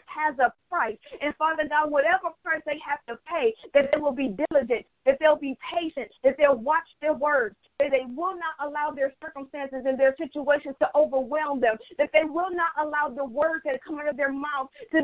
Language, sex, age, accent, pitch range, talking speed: English, female, 40-59, American, 285-330 Hz, 210 wpm